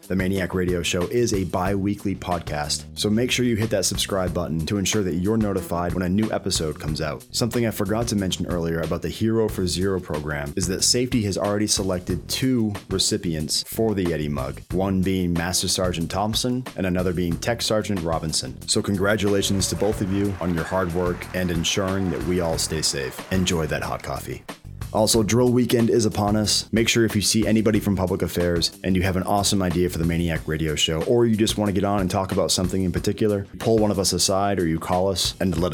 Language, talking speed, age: English, 225 wpm, 30-49